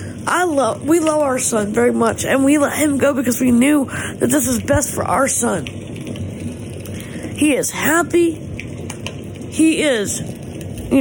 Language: English